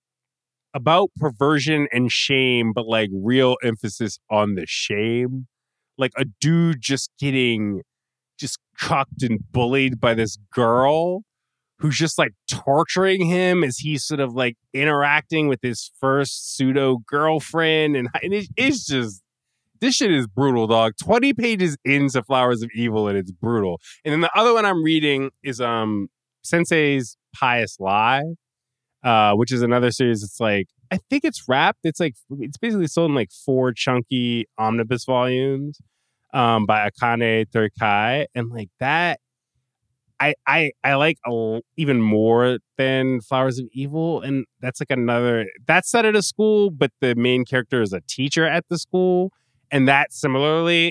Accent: American